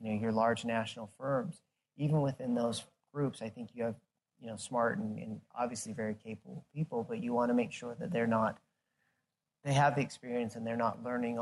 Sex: male